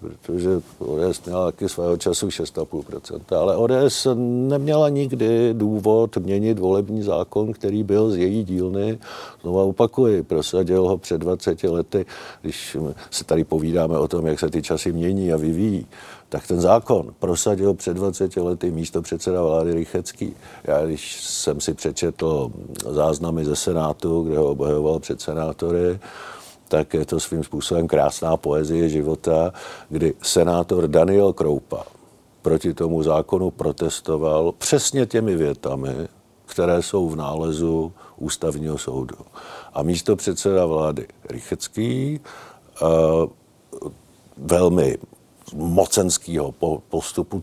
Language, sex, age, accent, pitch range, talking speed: Czech, male, 50-69, native, 80-105 Hz, 120 wpm